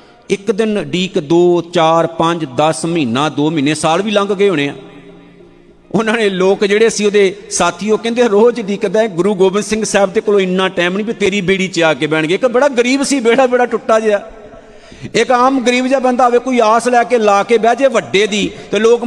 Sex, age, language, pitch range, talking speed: male, 50-69, Punjabi, 155-215 Hz, 215 wpm